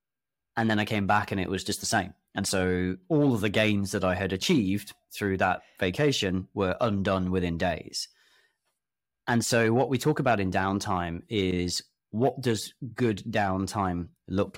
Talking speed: 175 wpm